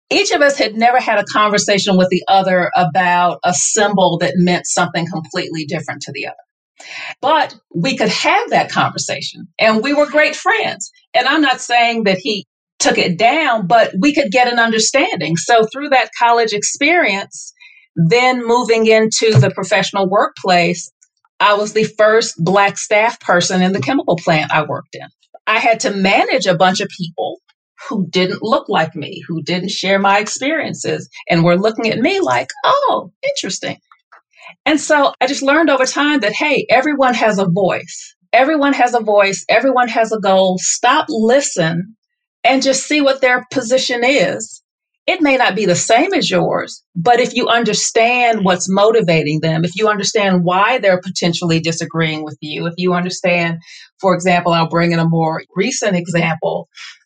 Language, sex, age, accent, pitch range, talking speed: English, female, 40-59, American, 180-255 Hz, 175 wpm